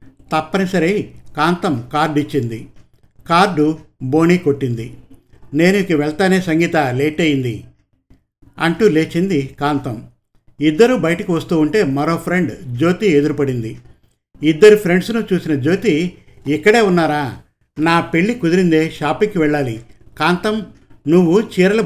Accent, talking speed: native, 100 wpm